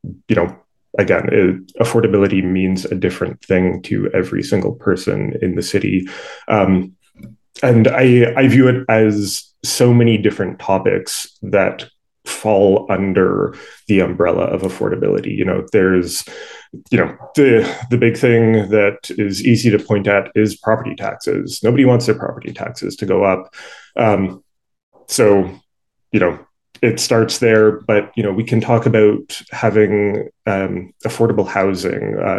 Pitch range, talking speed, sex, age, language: 95-115 Hz, 145 wpm, male, 20-39, English